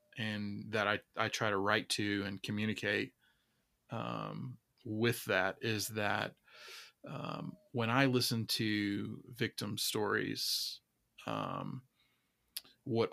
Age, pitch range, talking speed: 20-39, 105-120 Hz, 110 wpm